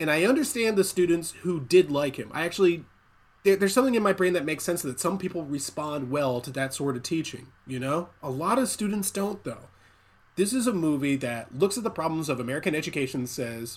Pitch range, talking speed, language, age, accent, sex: 120-170 Hz, 220 wpm, English, 20-39, American, male